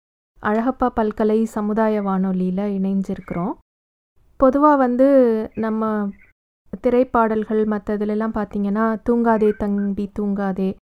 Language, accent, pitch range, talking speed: English, Indian, 205-250 Hz, 125 wpm